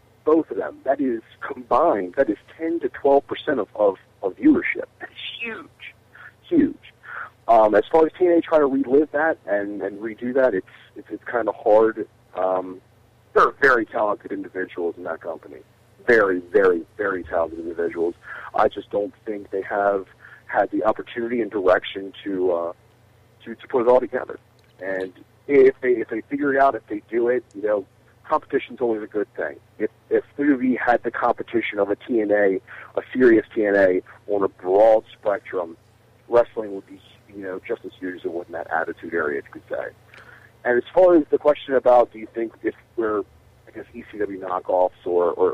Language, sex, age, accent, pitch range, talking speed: English, male, 50-69, American, 105-165 Hz, 190 wpm